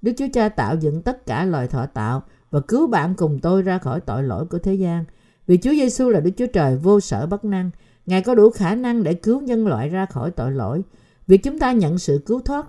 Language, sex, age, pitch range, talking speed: Vietnamese, female, 50-69, 160-215 Hz, 250 wpm